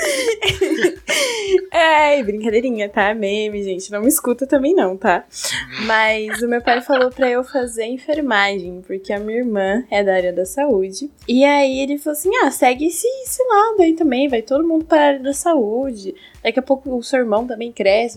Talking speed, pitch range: 185 wpm, 215-280 Hz